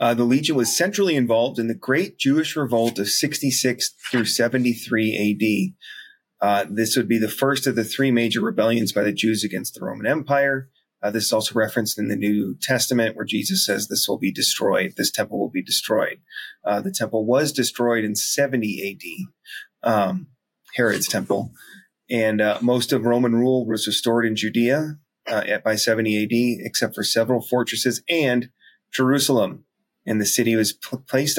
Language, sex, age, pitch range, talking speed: English, male, 30-49, 110-130 Hz, 175 wpm